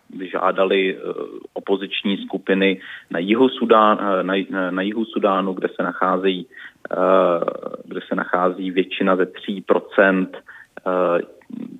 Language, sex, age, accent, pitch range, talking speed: Czech, male, 30-49, native, 95-110 Hz, 65 wpm